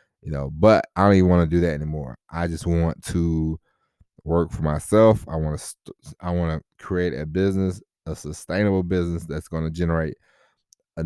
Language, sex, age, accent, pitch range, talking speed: English, male, 20-39, American, 80-90 Hz, 185 wpm